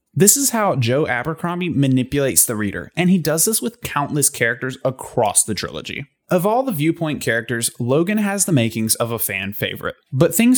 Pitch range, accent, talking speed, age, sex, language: 125-170 Hz, American, 185 wpm, 20-39, male, English